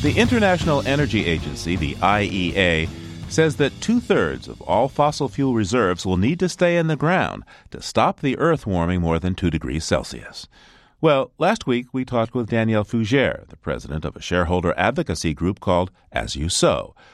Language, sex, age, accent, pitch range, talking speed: English, male, 40-59, American, 85-135 Hz, 175 wpm